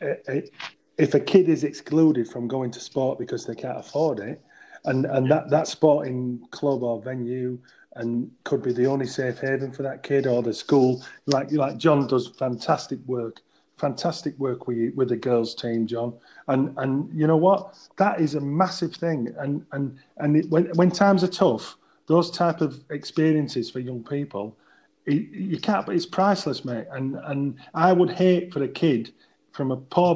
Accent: British